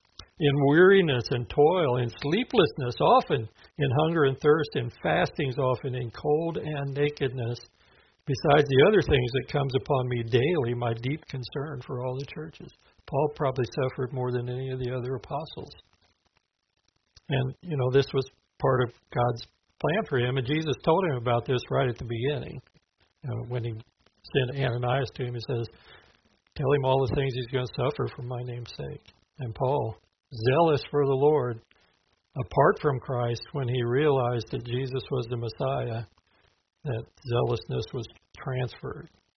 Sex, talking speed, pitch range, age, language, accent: male, 165 wpm, 120-145 Hz, 60-79, English, American